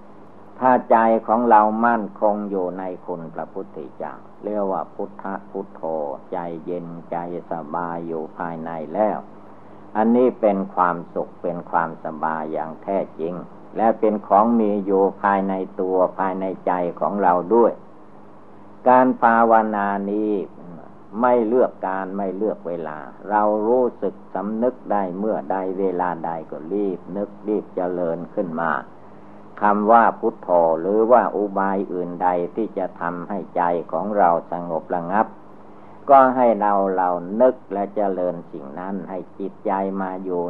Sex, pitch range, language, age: male, 90-105 Hz, Thai, 60-79